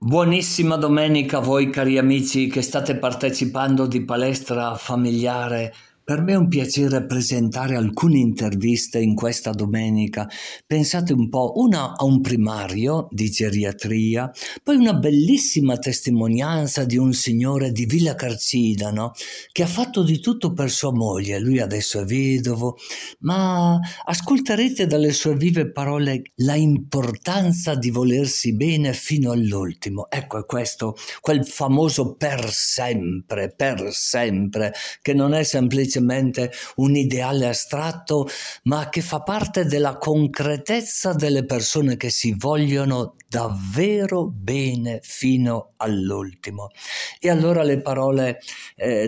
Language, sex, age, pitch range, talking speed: Italian, male, 50-69, 120-150 Hz, 125 wpm